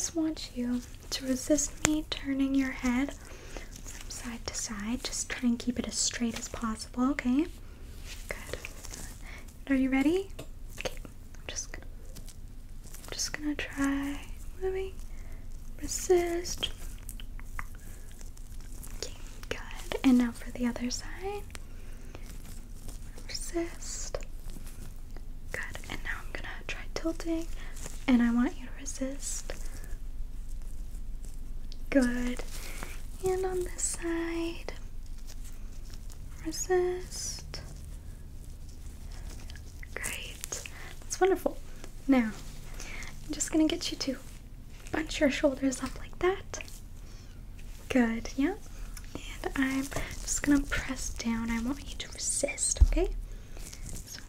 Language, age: English, 20-39